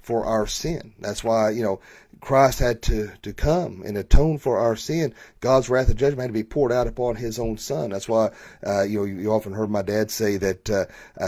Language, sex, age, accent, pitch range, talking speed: English, male, 40-59, American, 110-130 Hz, 230 wpm